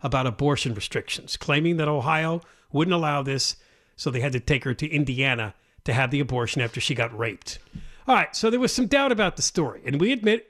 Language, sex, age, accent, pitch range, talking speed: English, male, 50-69, American, 145-230 Hz, 215 wpm